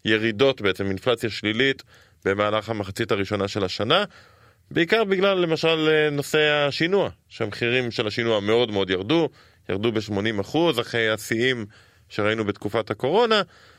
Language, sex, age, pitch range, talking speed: Hebrew, male, 20-39, 105-135 Hz, 120 wpm